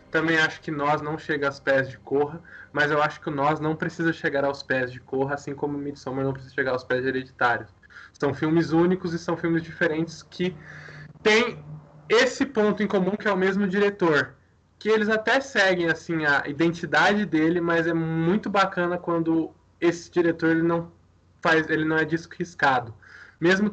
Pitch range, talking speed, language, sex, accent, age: 140-170 Hz, 185 wpm, Portuguese, male, Brazilian, 20-39